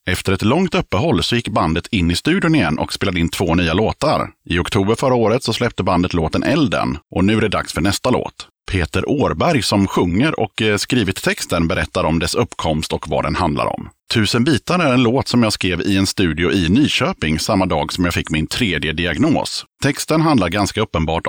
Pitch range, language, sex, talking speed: 90-120 Hz, Swedish, male, 210 wpm